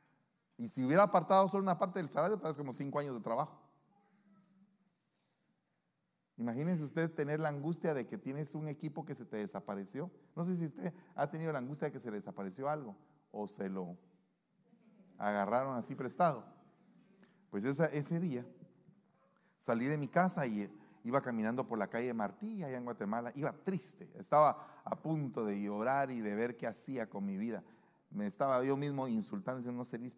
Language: Spanish